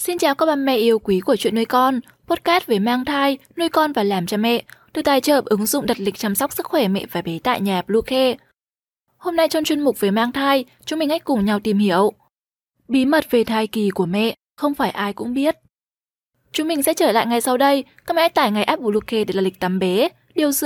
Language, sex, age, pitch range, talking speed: Vietnamese, female, 20-39, 210-290 Hz, 250 wpm